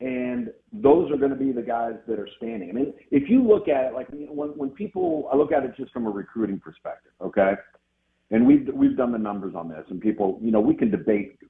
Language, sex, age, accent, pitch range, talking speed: English, male, 50-69, American, 95-130 Hz, 245 wpm